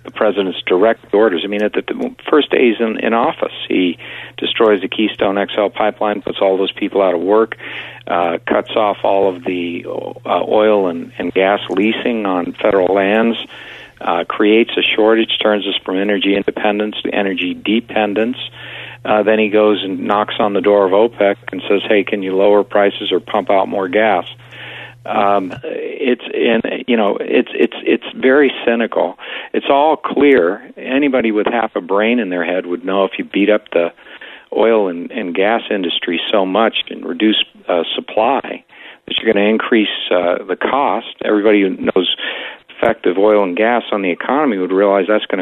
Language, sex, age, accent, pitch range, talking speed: English, male, 50-69, American, 95-110 Hz, 180 wpm